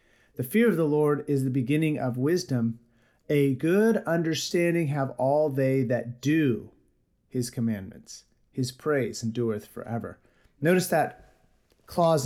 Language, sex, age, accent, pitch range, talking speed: English, male, 40-59, American, 120-160 Hz, 130 wpm